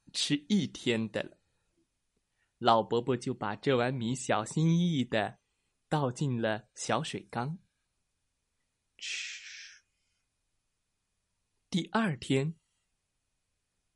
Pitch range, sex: 115-180 Hz, male